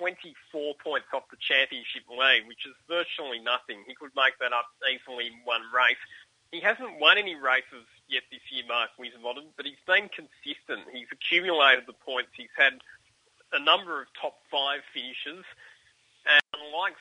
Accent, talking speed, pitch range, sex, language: Australian, 165 wpm, 120-145 Hz, male, English